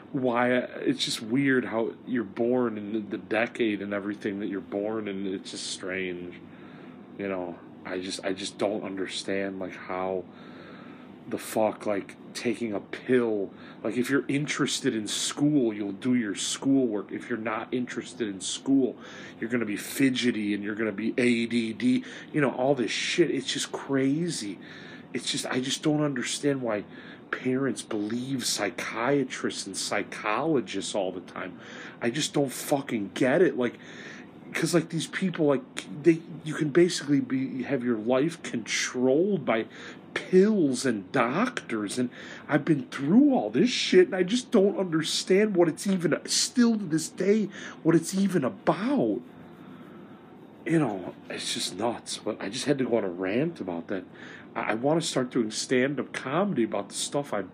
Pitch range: 115-155 Hz